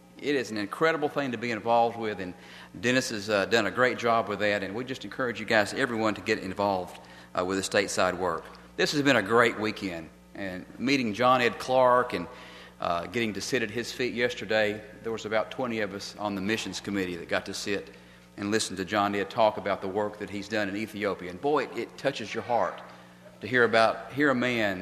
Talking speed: 230 wpm